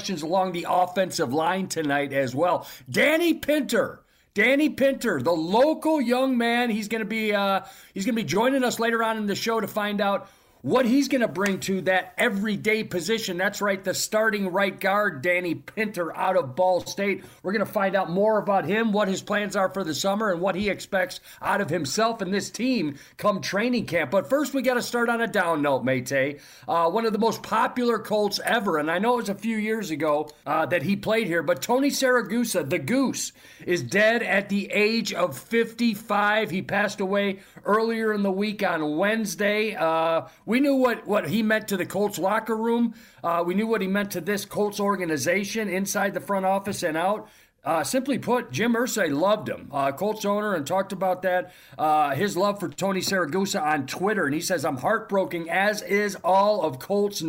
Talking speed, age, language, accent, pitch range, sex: 205 wpm, 50-69, English, American, 185-225 Hz, male